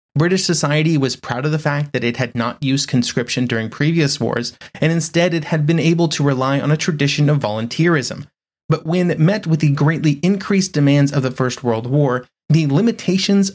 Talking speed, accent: 200 wpm, American